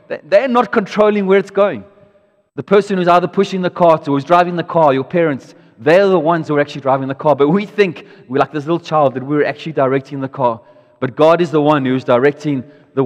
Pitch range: 135-165 Hz